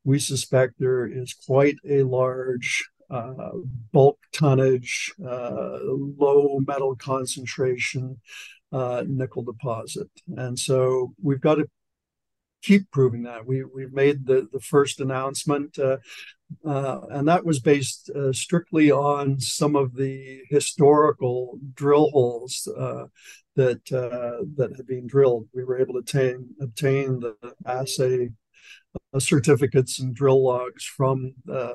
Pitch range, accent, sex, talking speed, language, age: 125-140 Hz, American, male, 130 wpm, English, 60-79